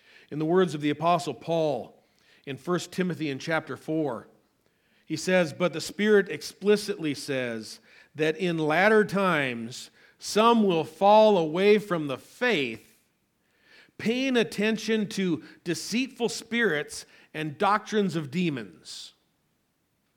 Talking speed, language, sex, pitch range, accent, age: 120 wpm, English, male, 145-200 Hz, American, 50-69